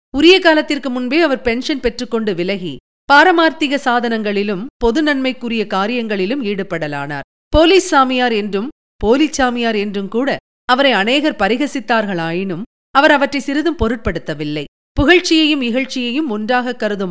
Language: Tamil